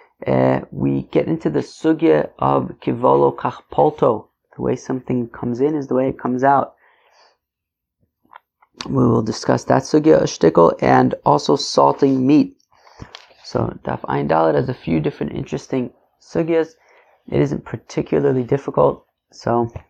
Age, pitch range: 30-49, 115-150 Hz